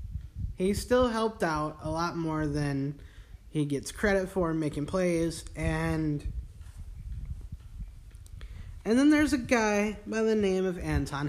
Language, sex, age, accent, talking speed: English, male, 20-39, American, 135 wpm